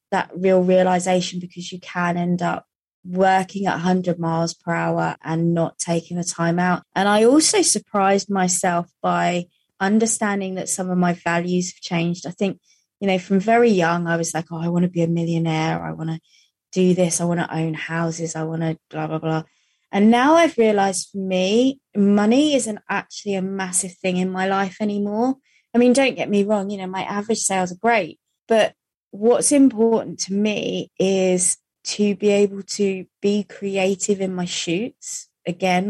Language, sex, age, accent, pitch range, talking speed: English, female, 20-39, British, 175-210 Hz, 185 wpm